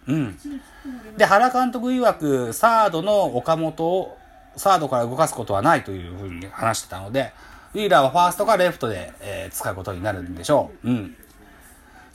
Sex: male